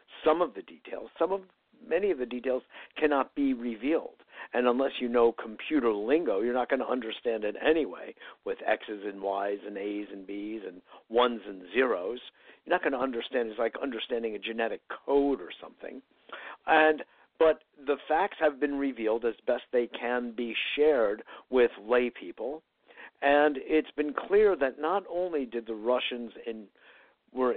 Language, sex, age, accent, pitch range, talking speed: English, male, 60-79, American, 120-170 Hz, 170 wpm